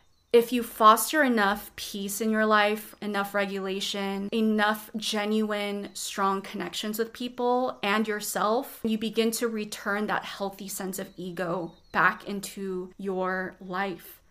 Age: 20-39